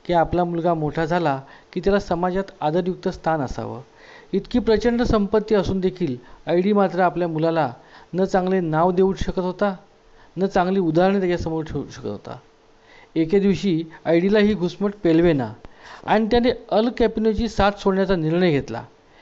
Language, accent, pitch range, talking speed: Marathi, native, 160-200 Hz, 150 wpm